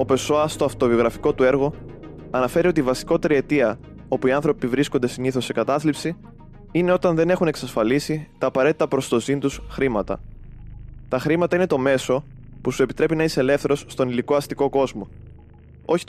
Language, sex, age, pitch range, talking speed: Greek, male, 20-39, 115-145 Hz, 170 wpm